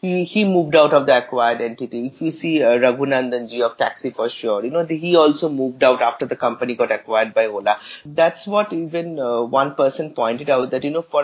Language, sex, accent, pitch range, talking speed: English, male, Indian, 135-180 Hz, 230 wpm